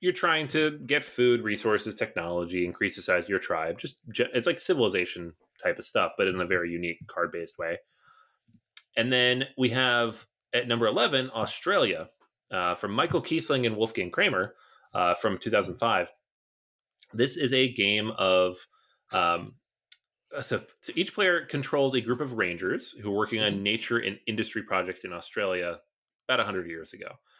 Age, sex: 30-49, male